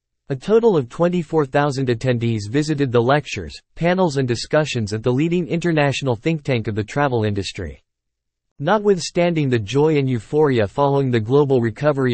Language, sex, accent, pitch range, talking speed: English, male, American, 115-150 Hz, 150 wpm